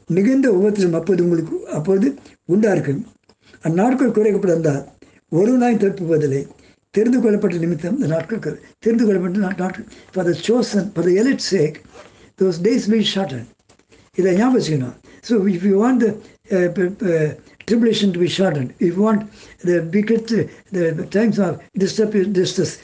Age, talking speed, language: 60-79, 80 wpm, Tamil